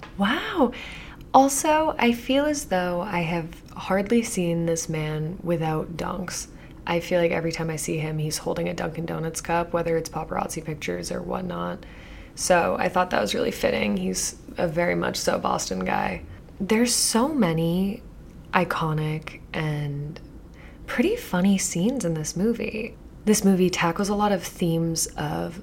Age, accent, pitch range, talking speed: 20-39, American, 155-190 Hz, 155 wpm